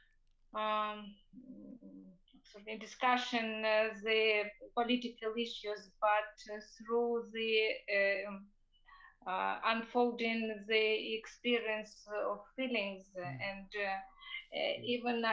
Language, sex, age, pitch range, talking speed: English, female, 20-39, 215-245 Hz, 95 wpm